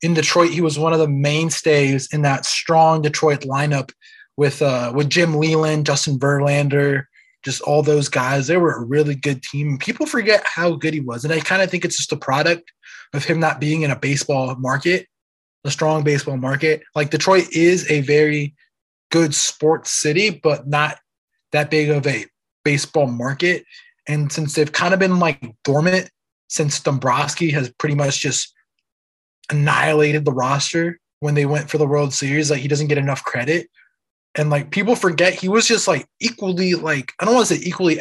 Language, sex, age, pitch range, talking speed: English, male, 20-39, 140-165 Hz, 190 wpm